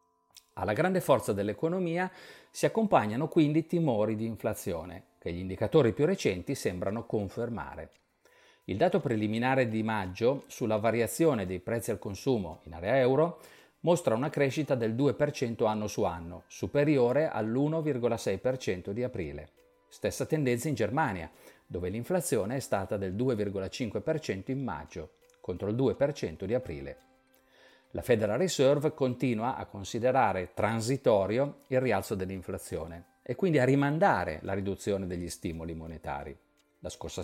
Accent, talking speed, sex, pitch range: native, 130 wpm, male, 100-140 Hz